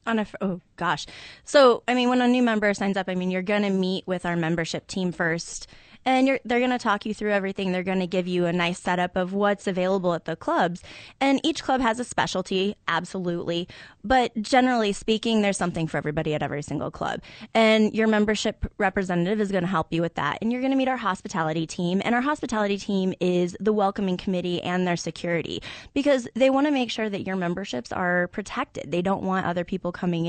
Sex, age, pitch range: female, 20-39, 170-215 Hz